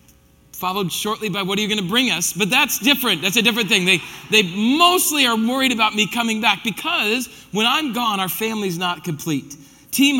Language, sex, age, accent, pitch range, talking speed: English, male, 40-59, American, 170-230 Hz, 205 wpm